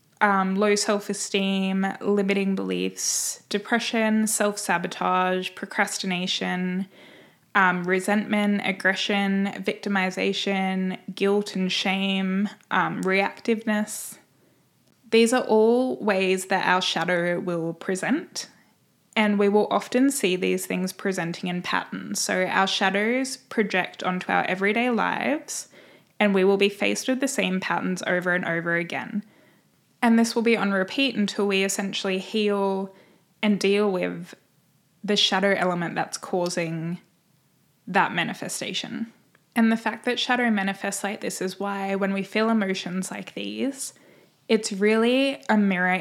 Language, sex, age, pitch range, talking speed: English, female, 10-29, 185-215 Hz, 125 wpm